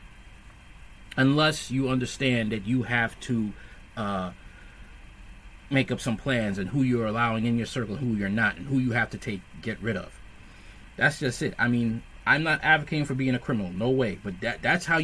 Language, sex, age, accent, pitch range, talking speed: English, male, 30-49, American, 115-150 Hz, 200 wpm